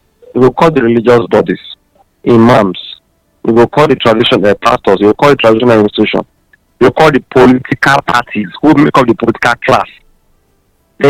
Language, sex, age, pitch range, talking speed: English, male, 50-69, 100-140 Hz, 175 wpm